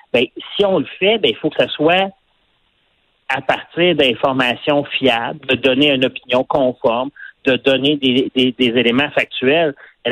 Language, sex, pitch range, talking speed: French, male, 130-170 Hz, 165 wpm